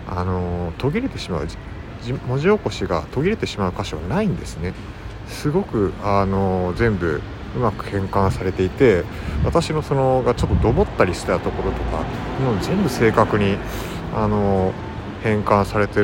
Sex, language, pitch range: male, Japanese, 95-120 Hz